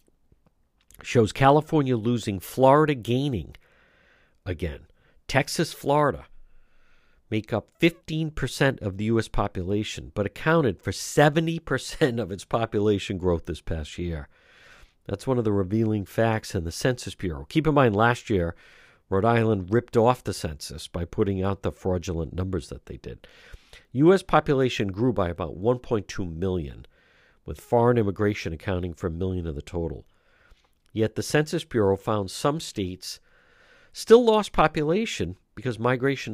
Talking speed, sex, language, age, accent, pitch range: 140 wpm, male, English, 50-69, American, 95-130 Hz